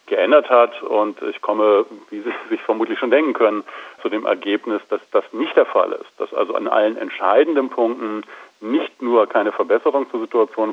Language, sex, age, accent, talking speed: German, male, 40-59, German, 185 wpm